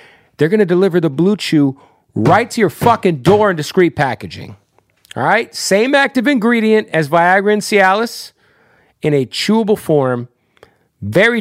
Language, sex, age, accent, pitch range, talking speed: English, male, 40-59, American, 135-195 Hz, 155 wpm